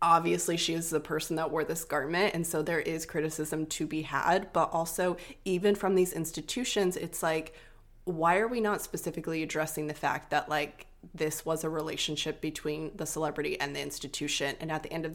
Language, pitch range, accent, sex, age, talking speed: English, 150-180 Hz, American, female, 20-39, 200 wpm